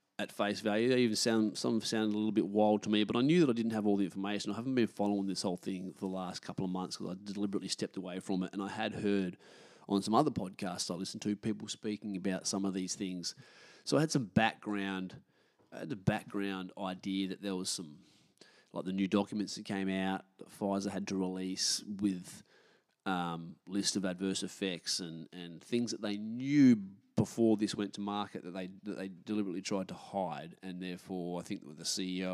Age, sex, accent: 20-39, male, Australian